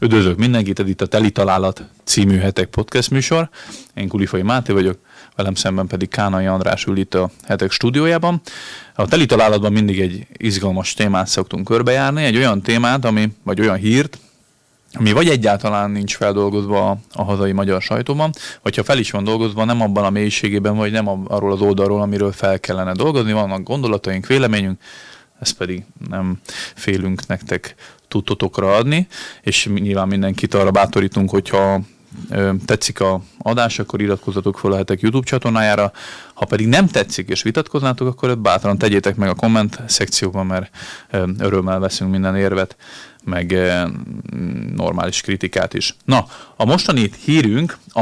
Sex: male